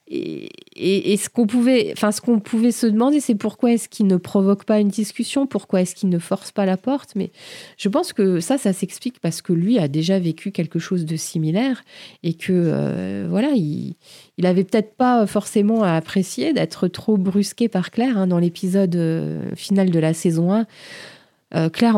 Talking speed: 195 wpm